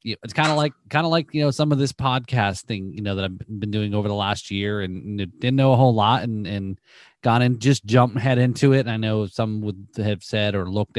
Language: English